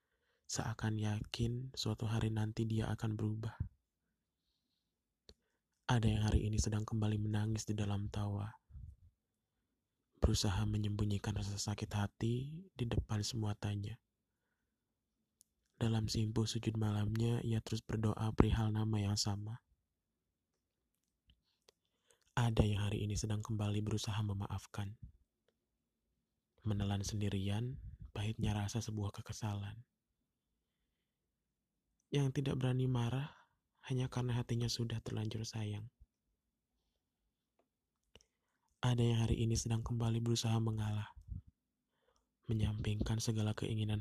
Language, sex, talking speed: Indonesian, male, 100 wpm